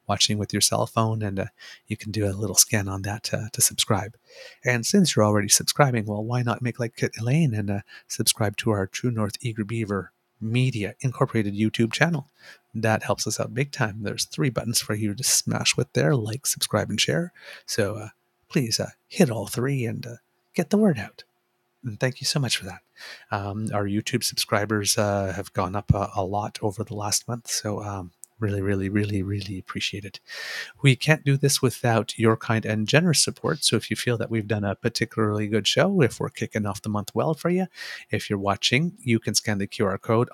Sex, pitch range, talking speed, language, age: male, 105-125 Hz, 215 wpm, English, 30-49